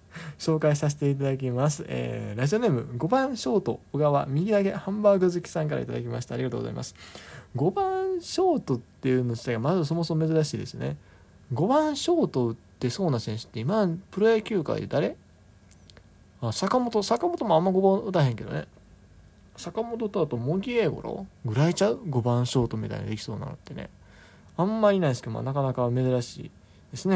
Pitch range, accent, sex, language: 120-190 Hz, native, male, Japanese